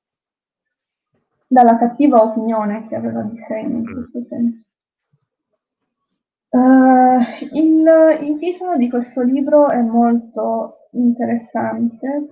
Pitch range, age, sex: 225-260 Hz, 20-39, female